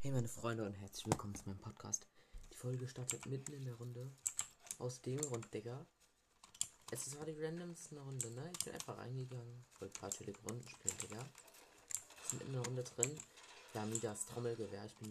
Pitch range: 105-120 Hz